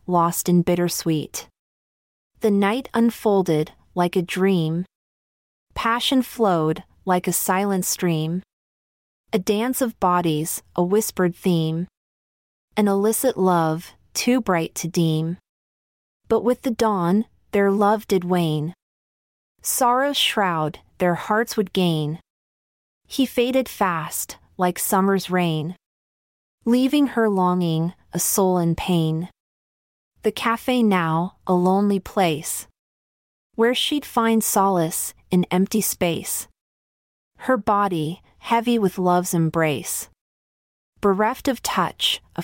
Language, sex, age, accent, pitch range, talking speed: English, female, 30-49, American, 170-225 Hz, 110 wpm